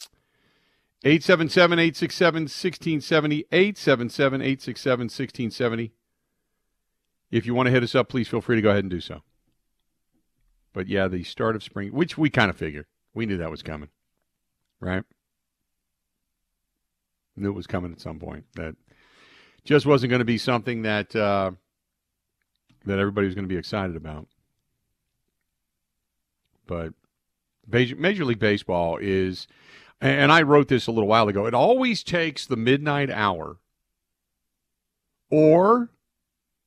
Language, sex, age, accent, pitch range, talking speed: English, male, 50-69, American, 90-140 Hz, 130 wpm